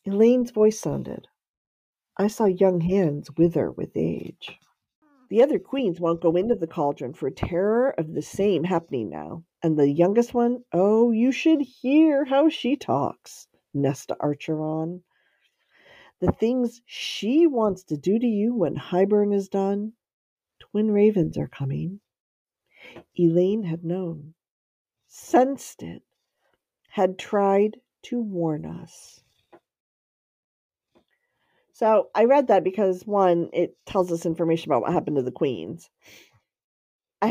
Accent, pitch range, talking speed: American, 150-210 Hz, 130 wpm